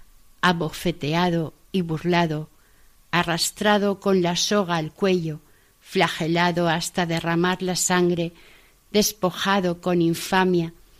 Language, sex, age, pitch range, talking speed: Spanish, female, 60-79, 165-195 Hz, 95 wpm